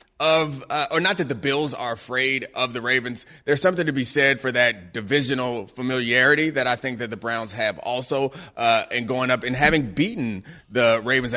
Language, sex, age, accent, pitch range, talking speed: English, male, 30-49, American, 120-150 Hz, 200 wpm